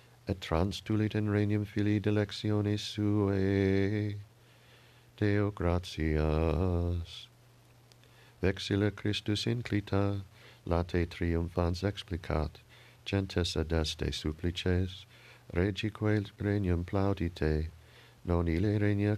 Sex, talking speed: male, 80 wpm